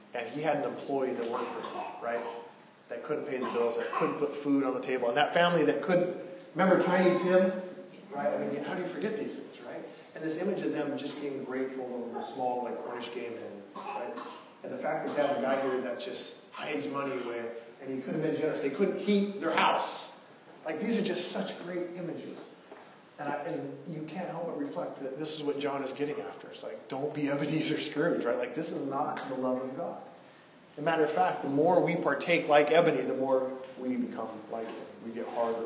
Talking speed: 230 wpm